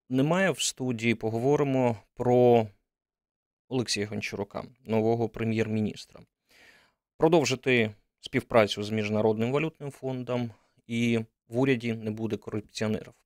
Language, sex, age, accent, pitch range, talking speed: Ukrainian, male, 20-39, native, 105-120 Hz, 95 wpm